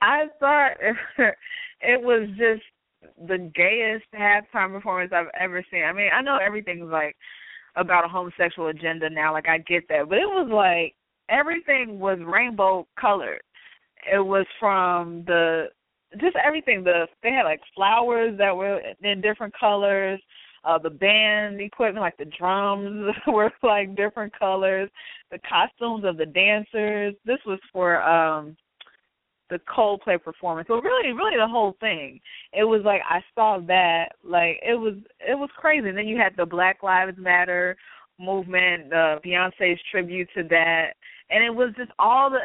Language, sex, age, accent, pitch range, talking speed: English, female, 20-39, American, 170-215 Hz, 160 wpm